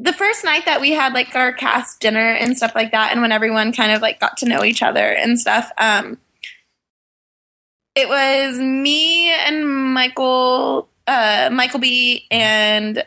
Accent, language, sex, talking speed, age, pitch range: American, English, female, 165 wpm, 20-39, 225-305 Hz